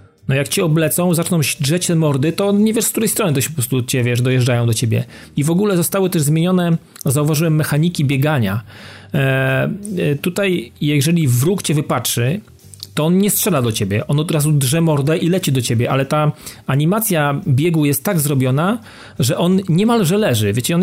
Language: Polish